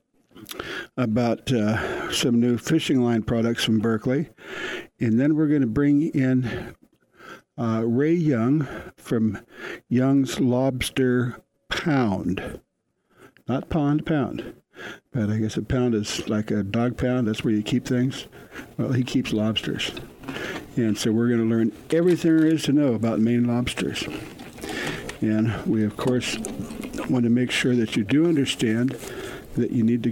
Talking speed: 150 wpm